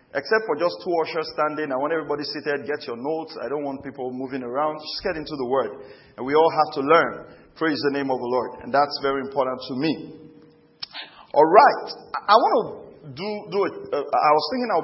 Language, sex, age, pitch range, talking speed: English, male, 40-59, 140-185 Hz, 230 wpm